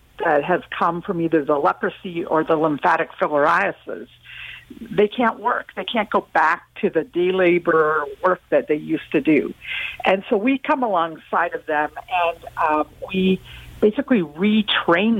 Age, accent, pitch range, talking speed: 50-69, American, 155-200 Hz, 160 wpm